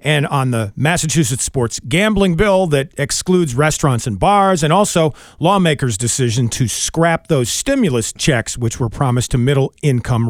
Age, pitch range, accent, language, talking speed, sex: 40-59, 125-175 Hz, American, English, 150 wpm, male